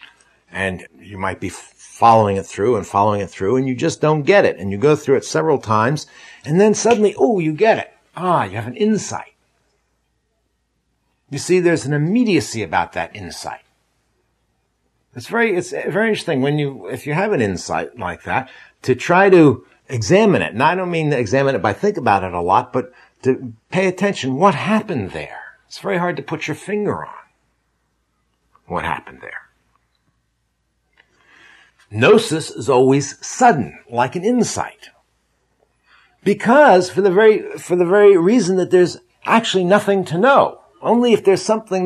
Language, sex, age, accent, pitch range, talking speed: English, male, 60-79, American, 125-200 Hz, 170 wpm